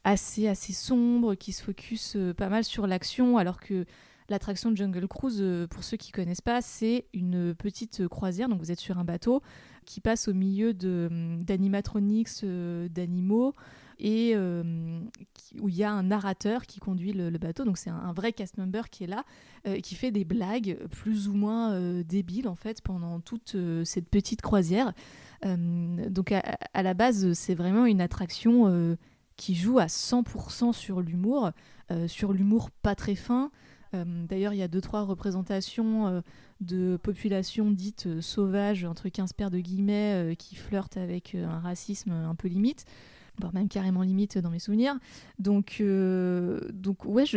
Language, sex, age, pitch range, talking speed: French, female, 20-39, 180-215 Hz, 180 wpm